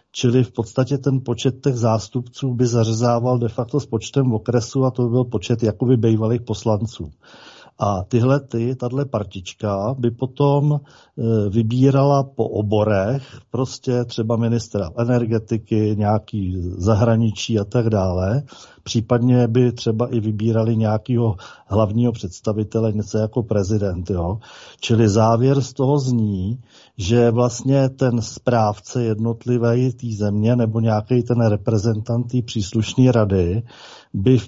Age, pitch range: 40-59, 110-130 Hz